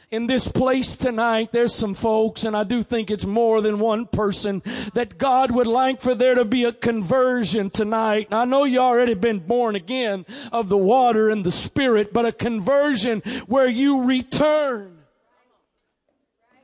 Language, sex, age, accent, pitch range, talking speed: English, male, 40-59, American, 185-255 Hz, 170 wpm